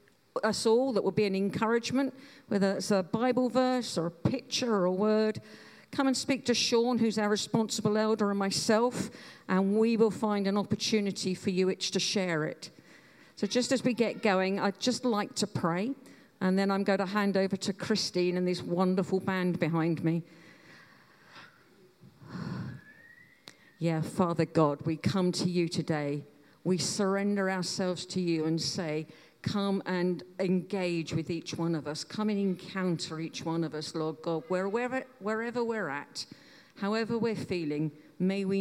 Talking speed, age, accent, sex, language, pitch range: 165 wpm, 50-69, British, female, English, 165-205 Hz